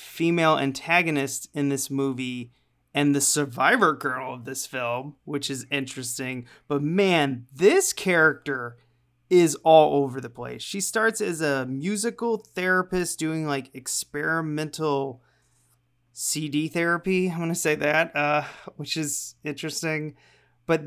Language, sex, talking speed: English, male, 125 wpm